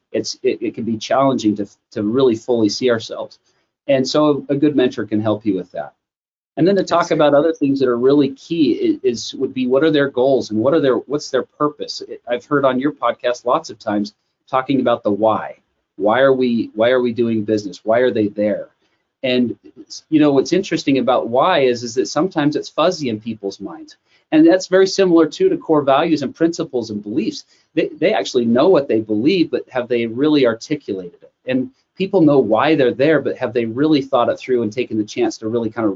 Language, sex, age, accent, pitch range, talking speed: English, male, 30-49, American, 115-160 Hz, 225 wpm